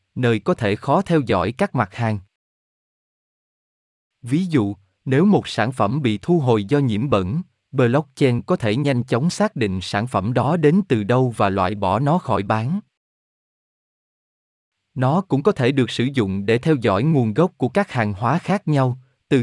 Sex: male